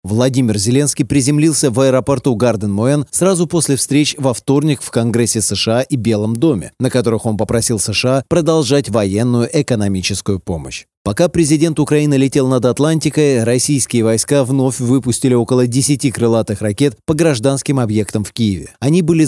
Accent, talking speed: native, 150 wpm